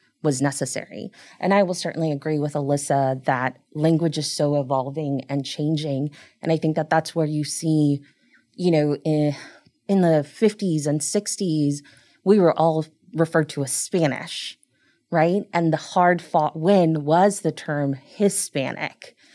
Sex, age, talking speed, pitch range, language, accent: female, 20-39, 150 wpm, 145-165 Hz, English, American